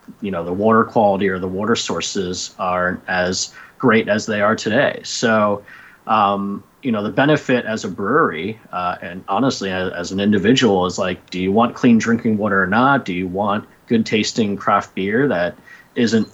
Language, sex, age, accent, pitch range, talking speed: English, male, 30-49, American, 95-120 Hz, 185 wpm